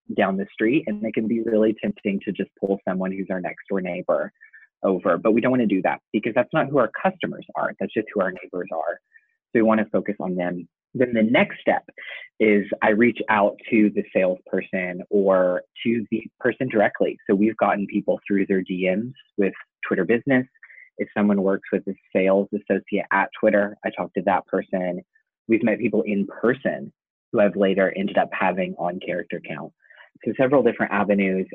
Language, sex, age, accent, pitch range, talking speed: English, male, 20-39, American, 95-115 Hz, 200 wpm